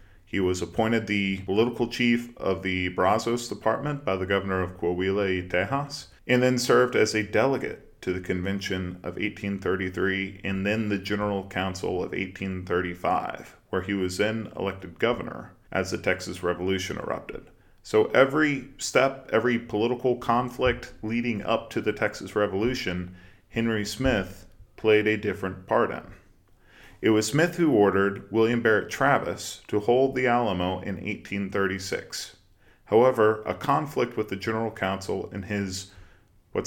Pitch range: 95-115 Hz